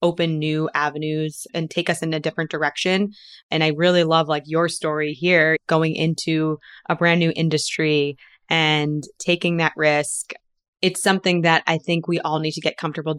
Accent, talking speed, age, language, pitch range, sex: American, 180 wpm, 20-39, English, 155-175 Hz, female